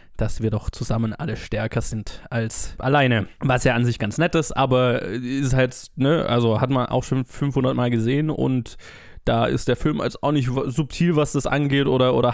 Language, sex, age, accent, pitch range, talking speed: German, male, 20-39, German, 110-130 Hz, 205 wpm